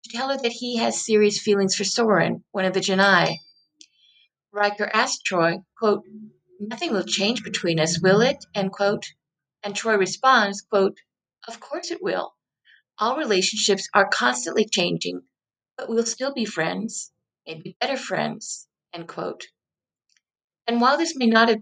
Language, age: English, 50-69